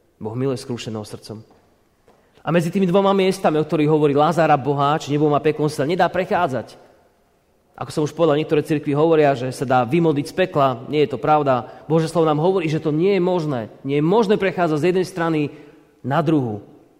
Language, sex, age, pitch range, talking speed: Slovak, male, 30-49, 145-190 Hz, 190 wpm